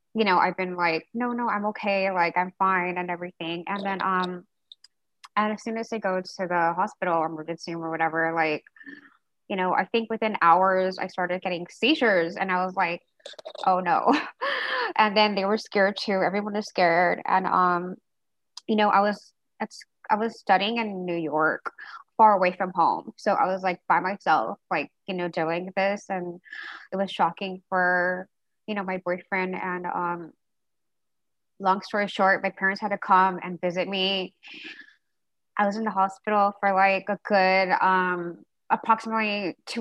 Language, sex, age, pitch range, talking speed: English, female, 20-39, 180-210 Hz, 180 wpm